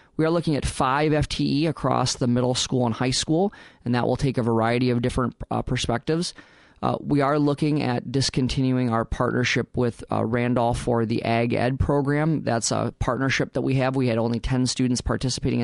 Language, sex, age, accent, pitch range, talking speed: English, male, 30-49, American, 120-140 Hz, 195 wpm